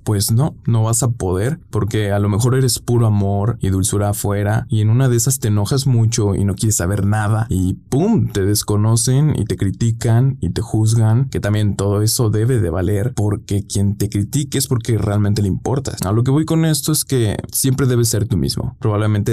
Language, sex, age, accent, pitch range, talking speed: Spanish, male, 20-39, Mexican, 100-120 Hz, 215 wpm